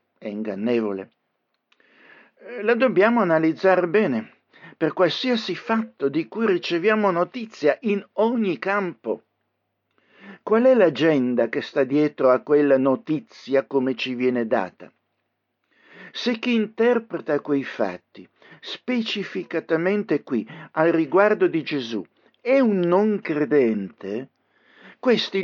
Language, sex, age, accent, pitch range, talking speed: Italian, male, 60-79, native, 140-210 Hz, 105 wpm